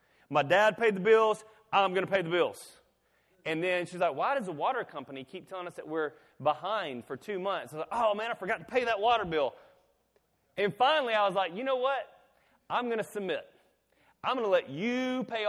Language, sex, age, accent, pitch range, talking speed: English, male, 30-49, American, 140-205 Hz, 230 wpm